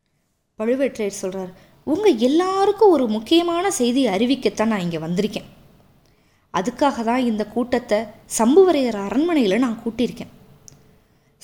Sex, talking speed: female, 100 wpm